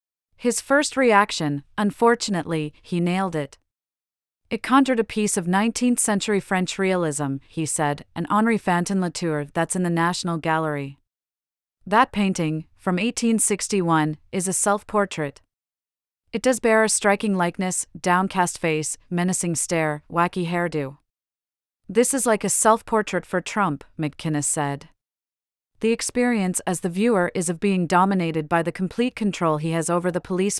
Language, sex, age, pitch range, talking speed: English, female, 30-49, 155-205 Hz, 140 wpm